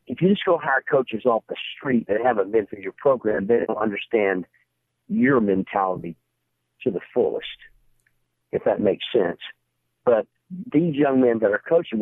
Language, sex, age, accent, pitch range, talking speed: English, male, 50-69, American, 85-125 Hz, 170 wpm